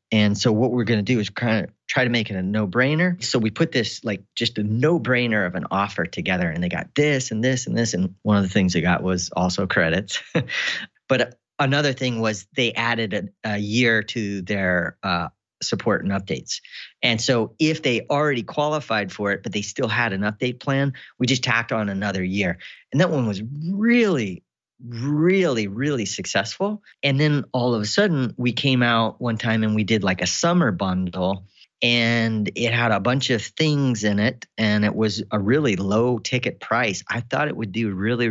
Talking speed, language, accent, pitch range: 210 wpm, English, American, 105-130 Hz